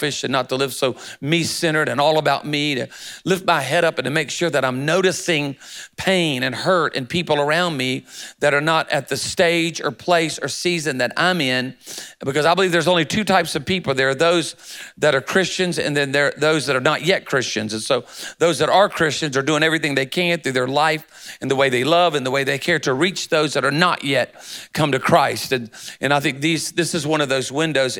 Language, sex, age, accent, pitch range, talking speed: English, male, 40-59, American, 135-170 Hz, 240 wpm